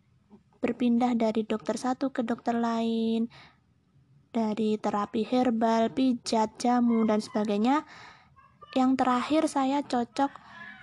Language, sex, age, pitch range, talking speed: Indonesian, female, 20-39, 225-255 Hz, 100 wpm